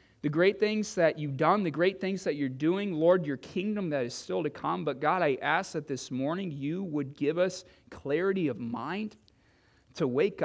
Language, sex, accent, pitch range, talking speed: English, male, American, 135-175 Hz, 205 wpm